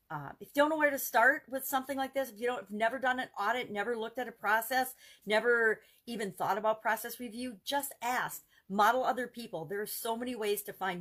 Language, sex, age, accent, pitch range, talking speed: English, female, 40-59, American, 165-225 Hz, 245 wpm